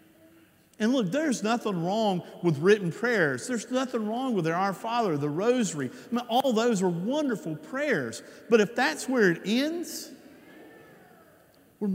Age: 50-69